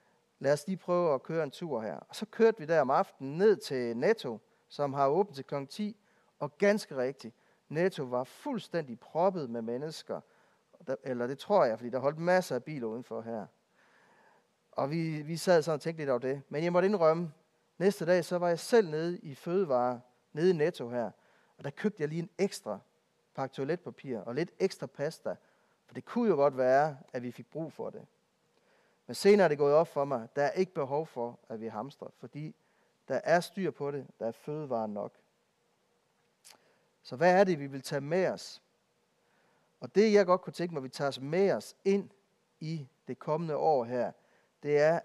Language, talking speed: Danish, 205 wpm